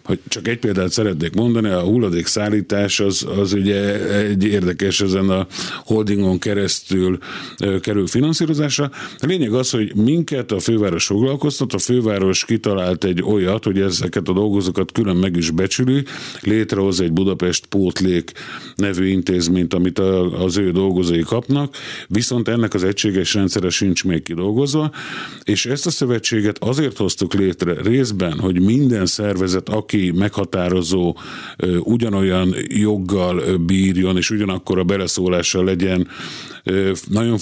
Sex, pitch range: male, 95-115 Hz